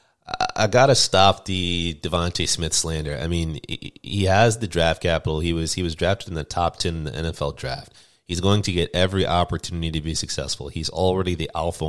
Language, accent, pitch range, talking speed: English, American, 80-95 Hz, 200 wpm